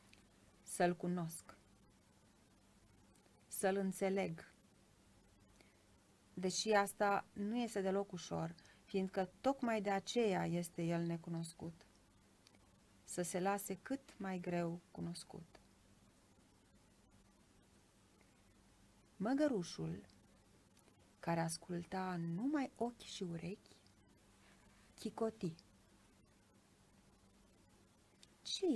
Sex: female